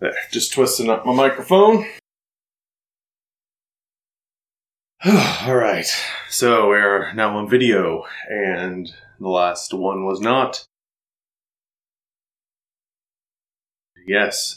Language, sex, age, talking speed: English, male, 30-49, 80 wpm